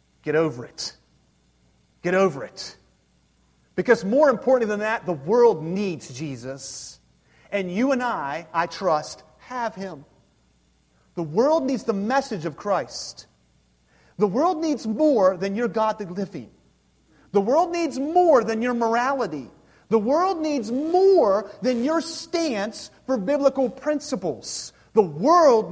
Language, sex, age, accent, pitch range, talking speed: English, male, 30-49, American, 190-290 Hz, 135 wpm